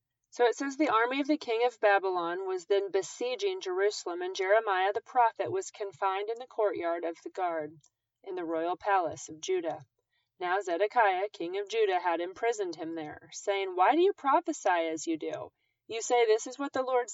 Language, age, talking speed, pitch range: English, 30-49, 195 wpm, 165-260 Hz